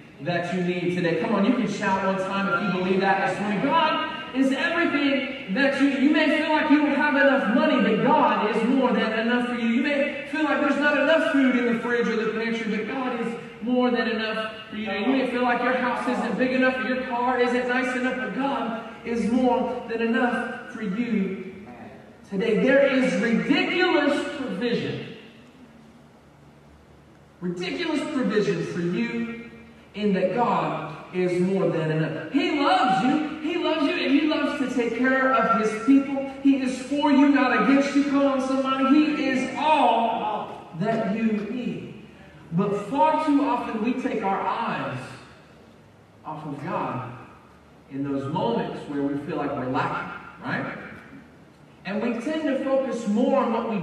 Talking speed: 180 wpm